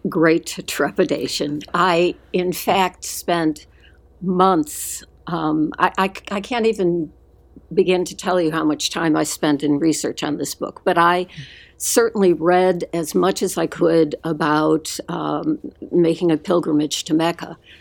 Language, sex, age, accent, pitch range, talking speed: English, female, 60-79, American, 160-195 Hz, 145 wpm